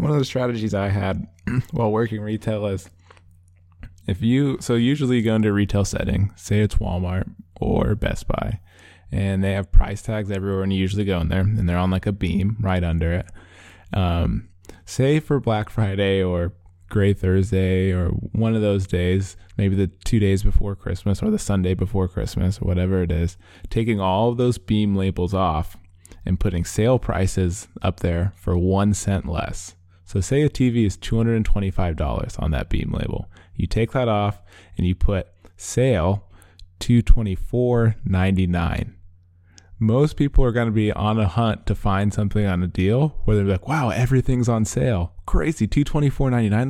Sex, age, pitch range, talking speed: male, 20-39, 90-110 Hz, 175 wpm